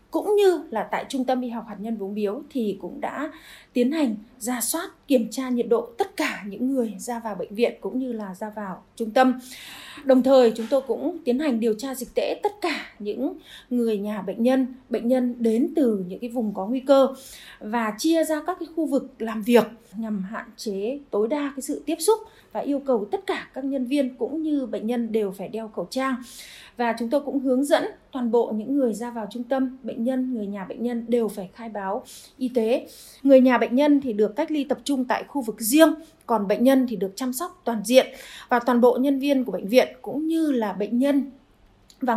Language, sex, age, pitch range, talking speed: Vietnamese, female, 20-39, 225-275 Hz, 235 wpm